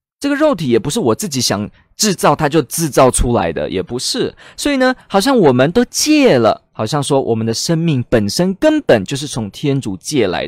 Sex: male